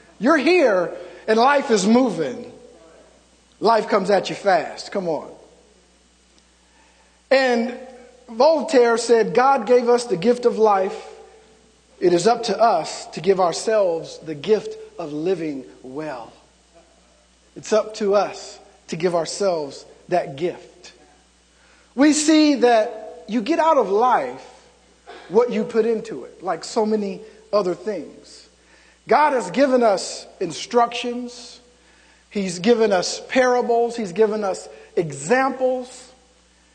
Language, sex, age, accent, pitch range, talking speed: English, male, 50-69, American, 180-260 Hz, 125 wpm